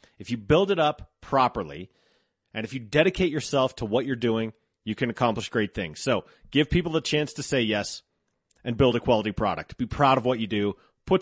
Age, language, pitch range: 30-49, English, 115-155 Hz